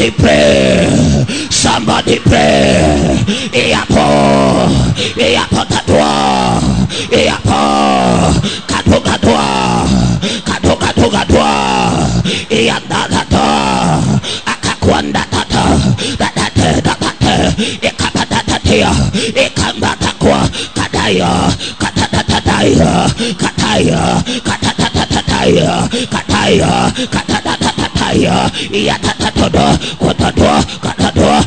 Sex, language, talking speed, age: male, English, 45 wpm, 50-69